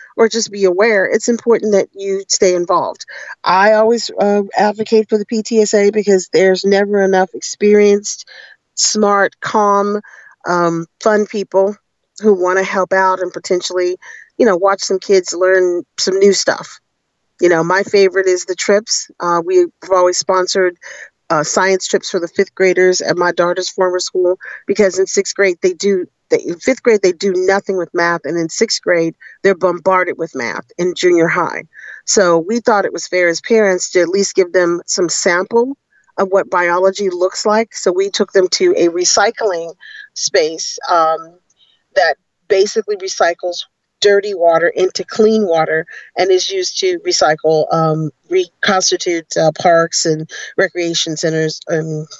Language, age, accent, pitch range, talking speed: English, 40-59, American, 175-215 Hz, 160 wpm